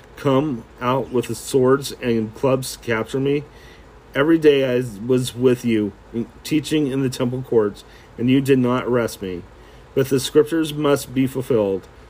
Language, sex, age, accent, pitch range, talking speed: English, male, 40-59, American, 115-140 Hz, 160 wpm